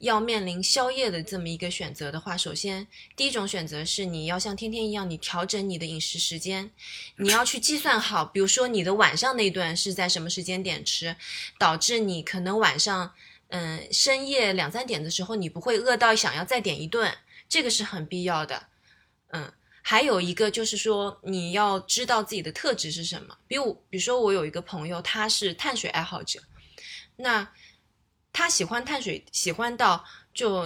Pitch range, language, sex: 175-225 Hz, Chinese, female